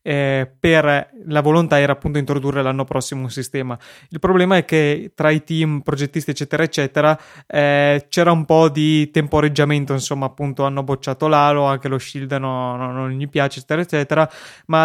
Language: Italian